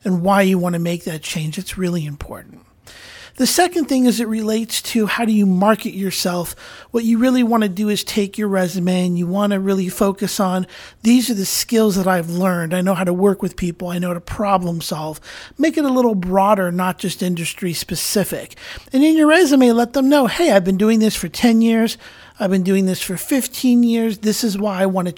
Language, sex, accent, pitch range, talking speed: English, male, American, 185-230 Hz, 220 wpm